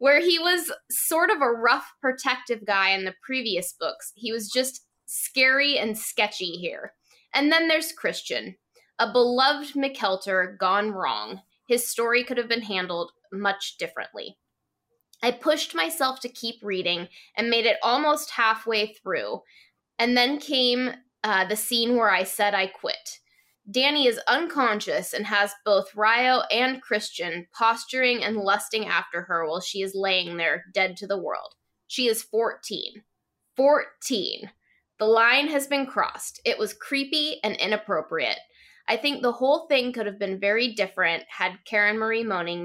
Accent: American